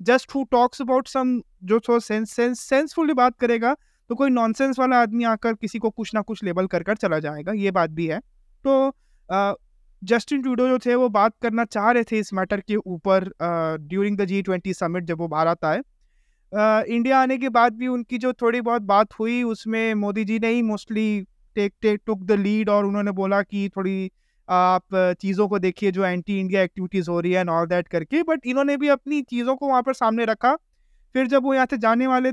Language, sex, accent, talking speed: Hindi, male, native, 210 wpm